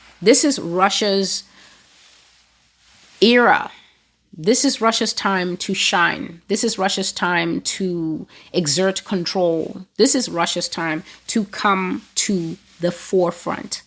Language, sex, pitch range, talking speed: English, female, 165-210 Hz, 115 wpm